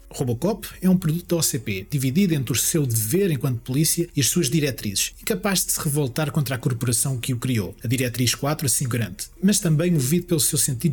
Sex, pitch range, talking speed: male, 130-175 Hz, 210 wpm